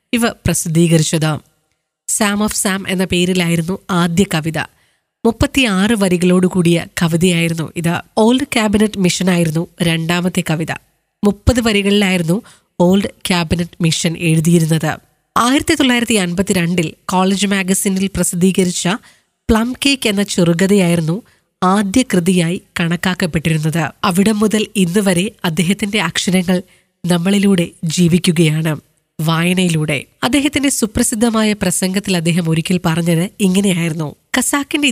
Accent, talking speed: native, 95 wpm